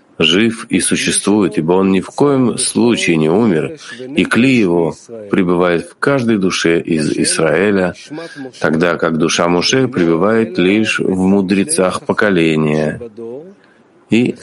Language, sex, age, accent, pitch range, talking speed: Russian, male, 50-69, native, 85-125 Hz, 125 wpm